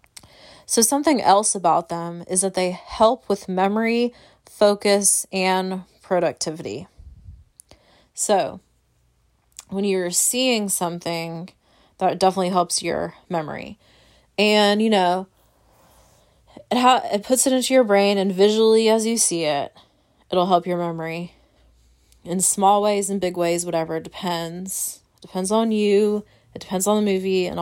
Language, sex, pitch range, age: English, female, 170-205 Hz, 20-39